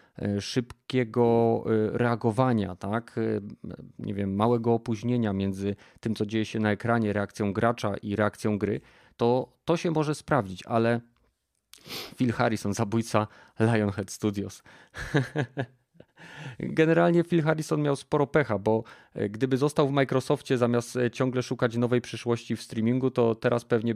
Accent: native